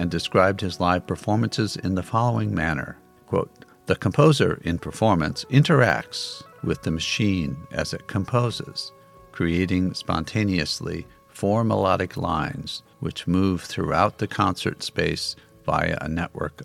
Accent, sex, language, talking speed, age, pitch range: American, male, English, 125 wpm, 50-69, 85-115 Hz